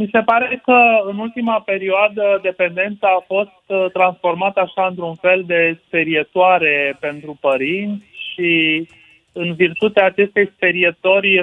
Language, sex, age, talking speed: Romanian, male, 30-49, 120 wpm